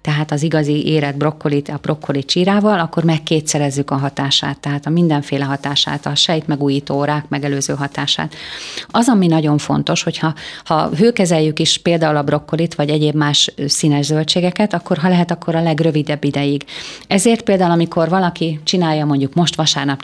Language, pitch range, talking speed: Hungarian, 150-180 Hz, 160 wpm